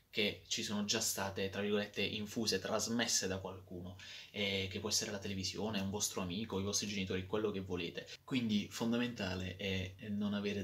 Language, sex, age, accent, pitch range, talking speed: Italian, male, 20-39, native, 95-105 Hz, 170 wpm